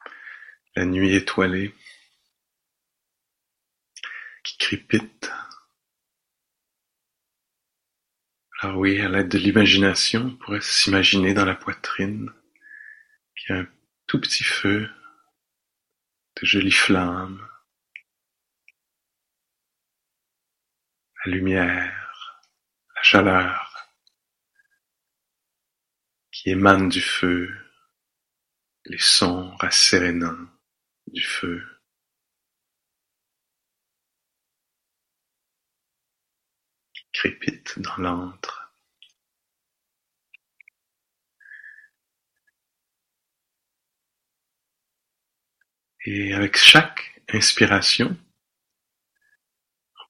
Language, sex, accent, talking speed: English, male, French, 60 wpm